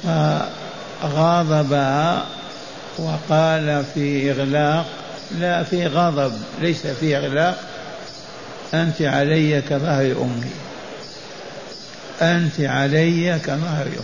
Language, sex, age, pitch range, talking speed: Arabic, male, 60-79, 140-160 Hz, 75 wpm